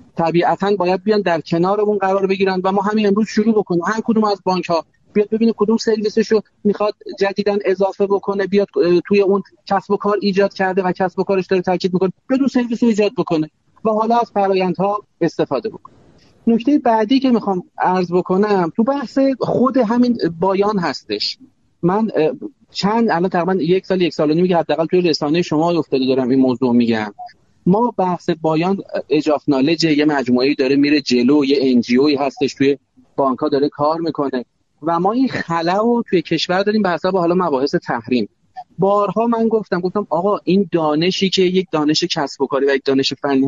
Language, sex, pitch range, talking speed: Persian, male, 160-210 Hz, 180 wpm